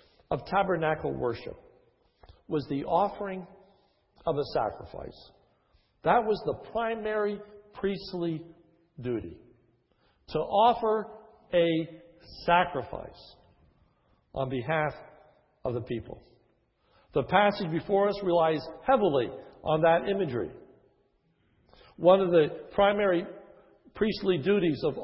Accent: American